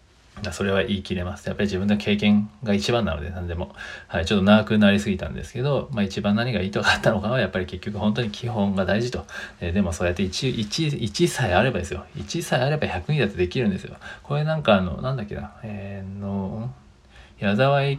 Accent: native